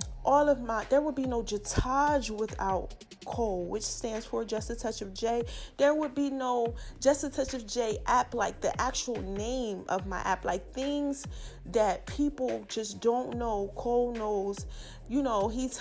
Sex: female